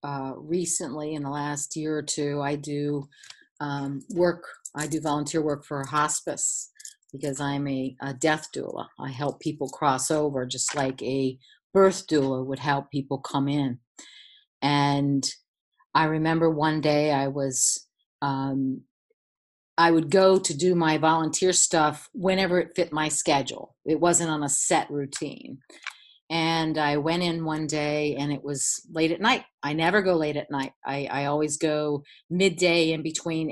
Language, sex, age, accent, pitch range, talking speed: English, female, 50-69, American, 145-175 Hz, 160 wpm